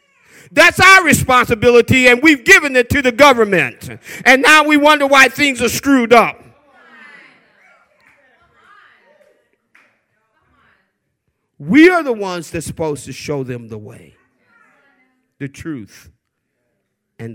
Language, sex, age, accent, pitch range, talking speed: English, male, 50-69, American, 125-185 Hz, 115 wpm